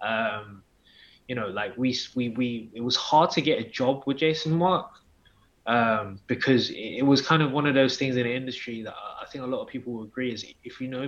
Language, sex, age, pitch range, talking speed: English, male, 20-39, 115-130 Hz, 240 wpm